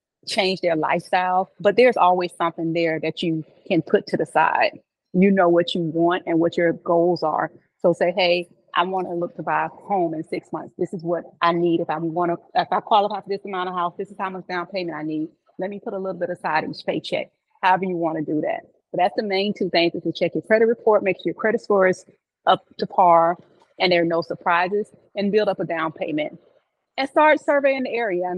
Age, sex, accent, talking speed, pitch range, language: 30-49, female, American, 250 wpm, 175-210 Hz, English